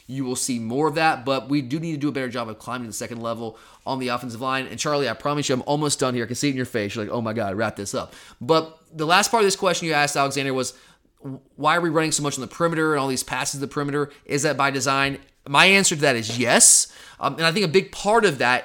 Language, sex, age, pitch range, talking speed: English, male, 20-39, 125-160 Hz, 300 wpm